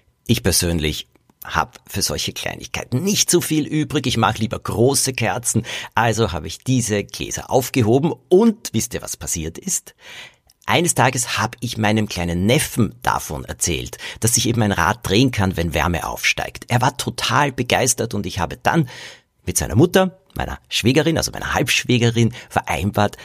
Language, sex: German, male